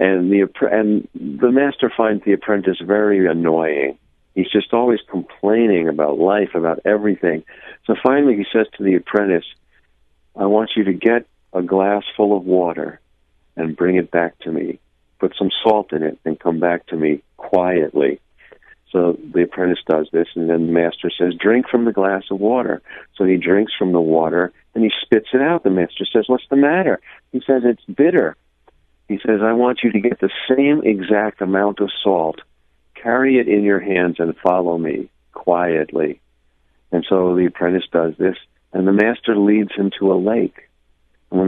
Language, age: English, 50-69